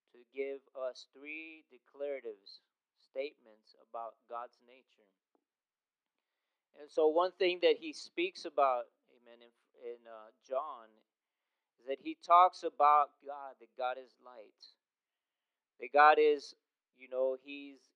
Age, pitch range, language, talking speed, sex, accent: 40-59, 125-175 Hz, English, 125 wpm, male, American